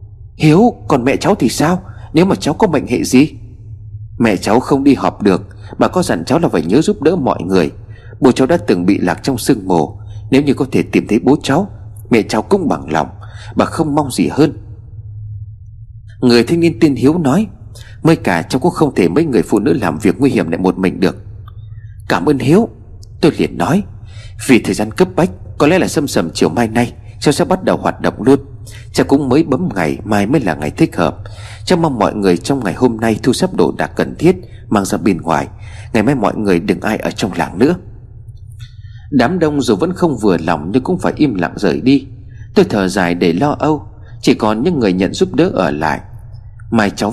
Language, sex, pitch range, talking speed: Vietnamese, male, 105-130 Hz, 225 wpm